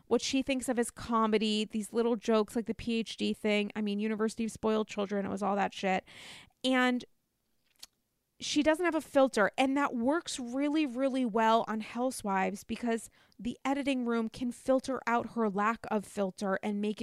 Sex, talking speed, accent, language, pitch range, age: female, 180 wpm, American, English, 205-250 Hz, 20-39